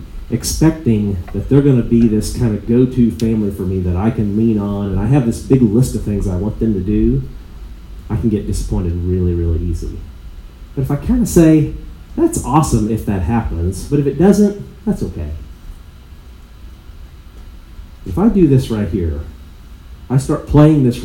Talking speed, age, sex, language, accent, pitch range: 180 wpm, 30-49, male, English, American, 95-125 Hz